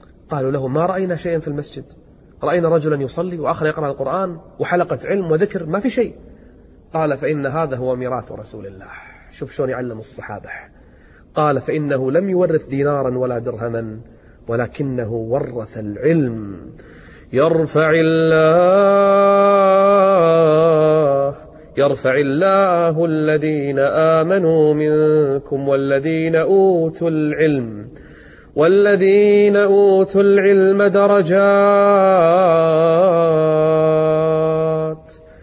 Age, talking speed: 30-49, 90 wpm